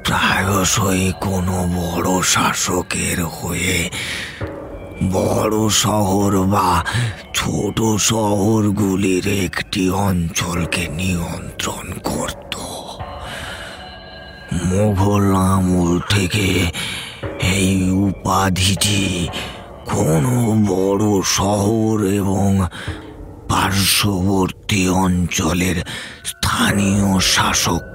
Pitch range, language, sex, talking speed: 90-100 Hz, Bengali, male, 40 wpm